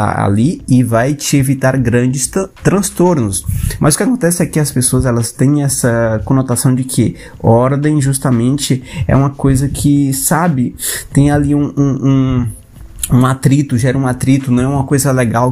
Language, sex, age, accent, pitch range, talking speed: Portuguese, male, 20-39, Brazilian, 115-150 Hz, 170 wpm